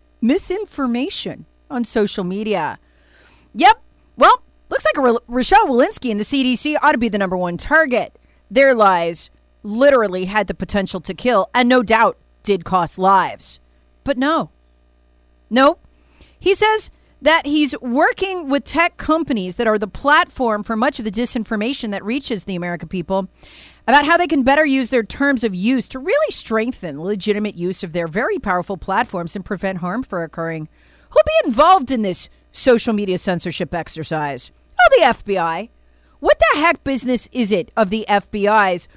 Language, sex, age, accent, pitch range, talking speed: English, female, 40-59, American, 190-290 Hz, 165 wpm